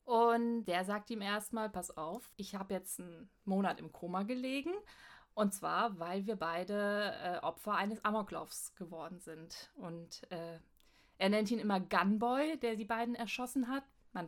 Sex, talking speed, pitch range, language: female, 165 wpm, 185-240 Hz, German